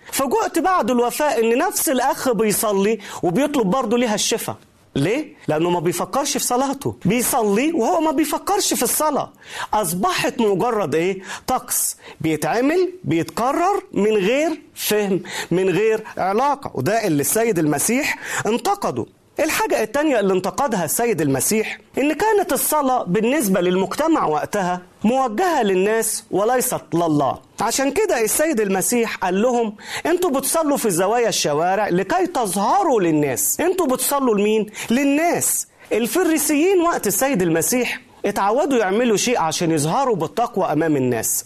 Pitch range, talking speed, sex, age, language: 210-295 Hz, 125 wpm, male, 40-59, Arabic